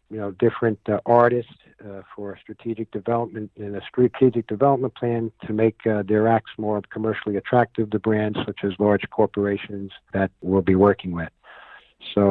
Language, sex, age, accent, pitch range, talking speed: English, male, 50-69, American, 100-115 Hz, 165 wpm